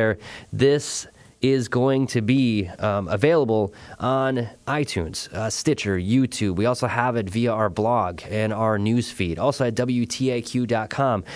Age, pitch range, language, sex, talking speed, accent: 20-39, 100-125 Hz, English, male, 135 wpm, American